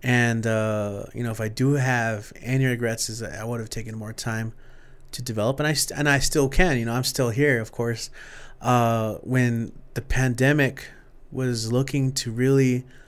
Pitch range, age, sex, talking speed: 115-135 Hz, 30-49, male, 190 wpm